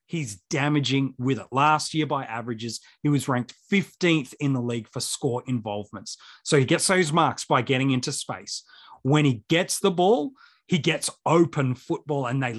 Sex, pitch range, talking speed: male, 130-175 Hz, 180 wpm